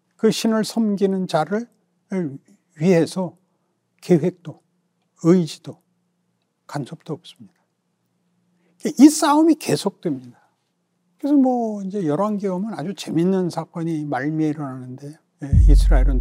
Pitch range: 145-210 Hz